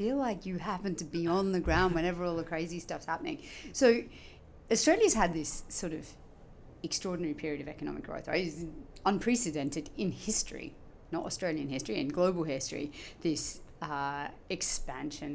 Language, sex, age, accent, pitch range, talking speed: English, female, 30-49, Australian, 140-175 Hz, 155 wpm